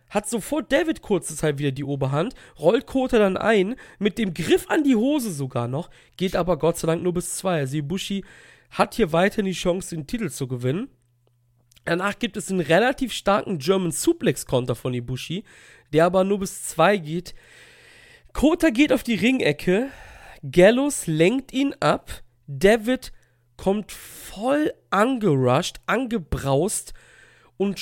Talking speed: 150 wpm